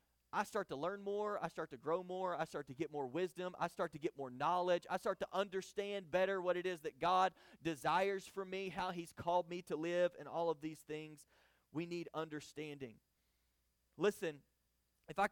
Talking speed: 205 wpm